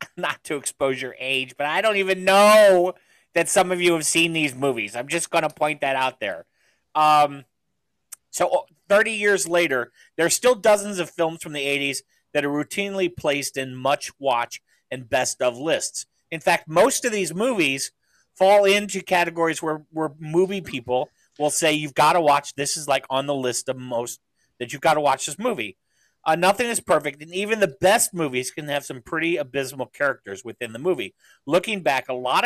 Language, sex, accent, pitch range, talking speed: English, male, American, 130-180 Hz, 200 wpm